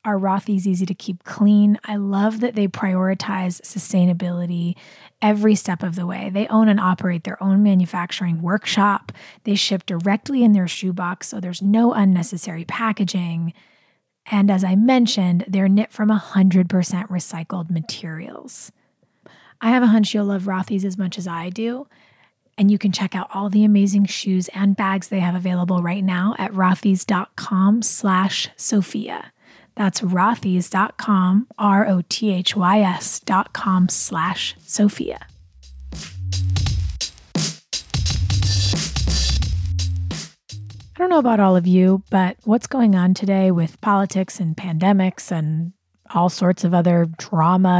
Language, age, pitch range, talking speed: English, 20-39, 175-205 Hz, 135 wpm